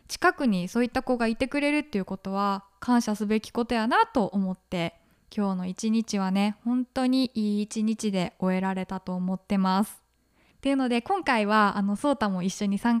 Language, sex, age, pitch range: Japanese, female, 20-39, 195-245 Hz